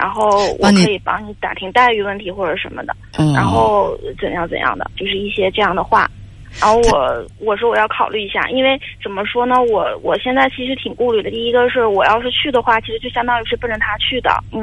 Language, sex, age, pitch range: Chinese, female, 30-49, 205-250 Hz